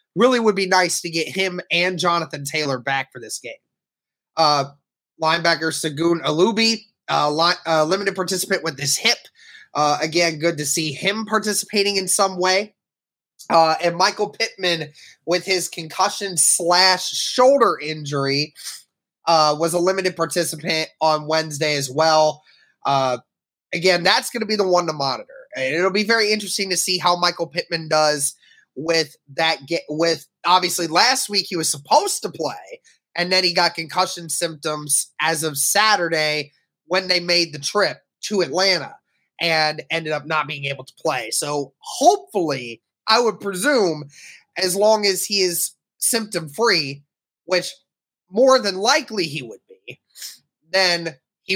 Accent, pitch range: American, 155-190 Hz